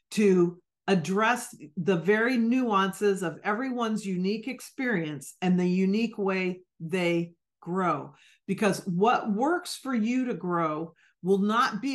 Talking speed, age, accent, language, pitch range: 125 wpm, 40-59, American, English, 185-235 Hz